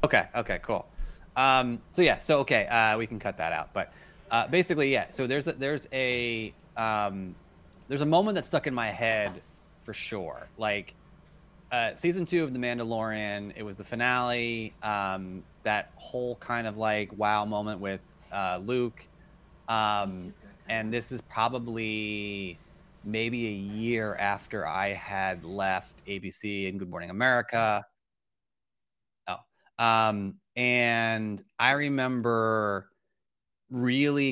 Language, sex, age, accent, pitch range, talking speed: English, male, 30-49, American, 100-120 Hz, 130 wpm